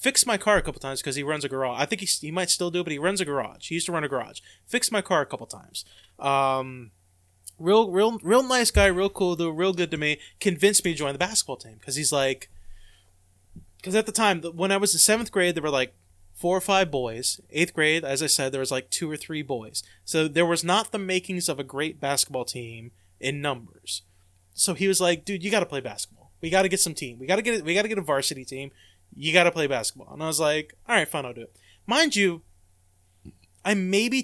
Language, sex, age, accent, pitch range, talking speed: English, male, 20-39, American, 120-185 Hz, 255 wpm